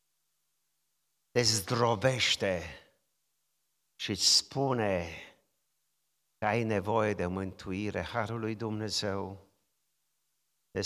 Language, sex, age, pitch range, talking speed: Romanian, male, 50-69, 110-170 Hz, 70 wpm